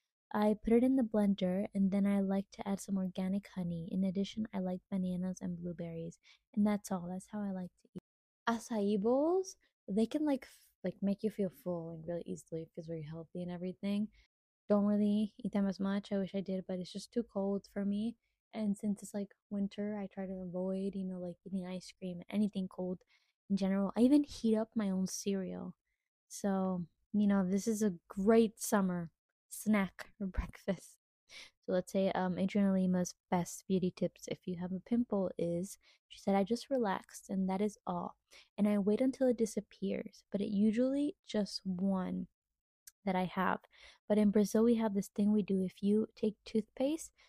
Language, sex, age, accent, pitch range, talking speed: Spanish, female, 20-39, American, 190-215 Hz, 195 wpm